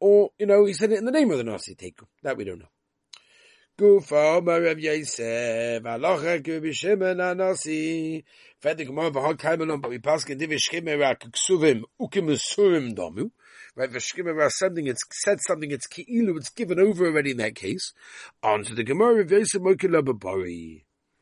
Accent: British